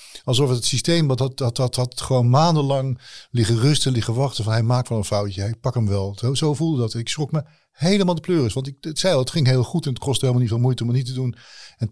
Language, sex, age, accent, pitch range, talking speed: Dutch, male, 50-69, Dutch, 125-155 Hz, 285 wpm